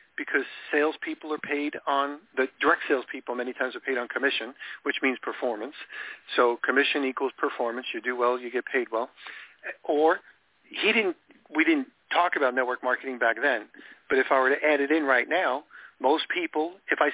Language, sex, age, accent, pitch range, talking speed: English, male, 50-69, American, 120-155 Hz, 185 wpm